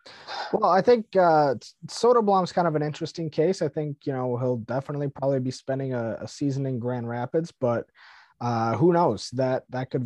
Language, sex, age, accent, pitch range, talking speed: English, male, 20-39, American, 115-135 Hz, 195 wpm